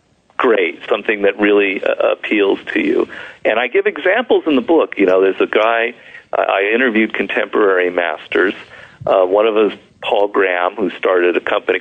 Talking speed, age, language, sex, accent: 180 wpm, 50-69, English, male, American